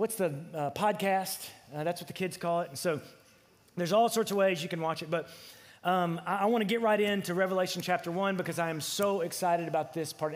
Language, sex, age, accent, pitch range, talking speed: English, male, 30-49, American, 165-215 Hz, 235 wpm